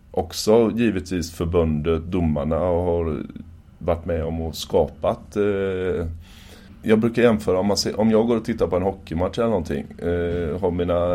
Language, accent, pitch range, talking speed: Swedish, native, 80-105 Hz, 165 wpm